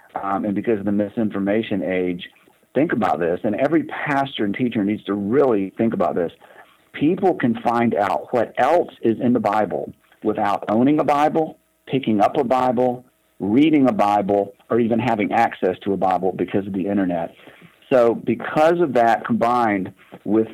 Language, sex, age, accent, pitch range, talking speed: English, male, 50-69, American, 100-115 Hz, 170 wpm